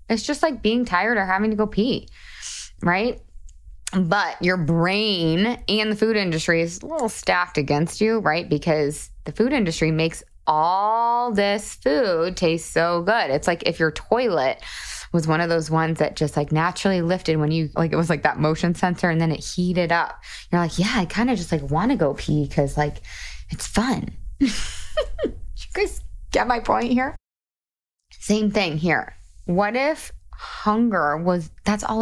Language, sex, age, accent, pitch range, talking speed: English, female, 20-39, American, 160-215 Hz, 180 wpm